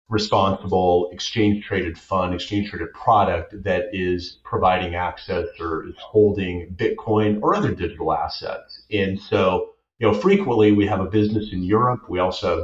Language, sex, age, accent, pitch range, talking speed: English, male, 30-49, American, 90-105 Hz, 155 wpm